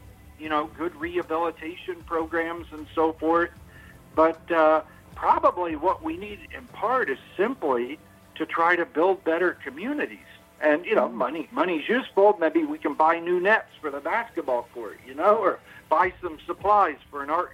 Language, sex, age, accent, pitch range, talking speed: English, male, 60-79, American, 155-200 Hz, 170 wpm